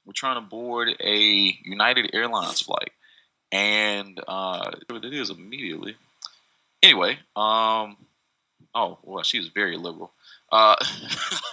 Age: 20-39